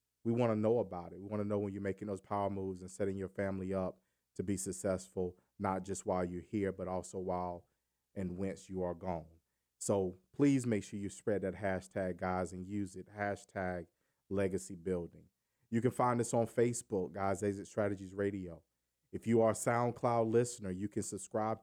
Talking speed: 195 wpm